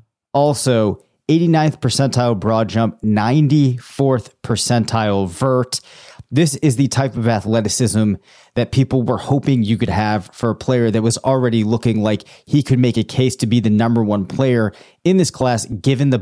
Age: 30-49